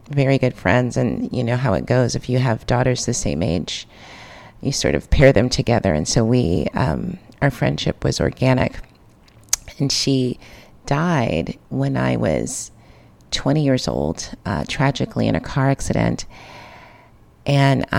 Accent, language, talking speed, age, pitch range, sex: American, English, 155 wpm, 30-49, 120-150 Hz, female